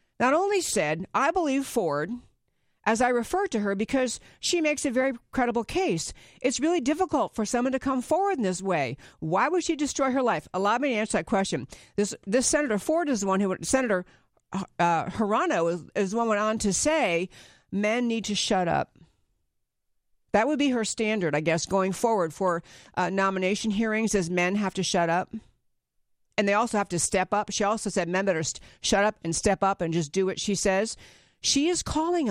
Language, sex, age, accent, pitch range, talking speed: English, female, 50-69, American, 185-255 Hz, 205 wpm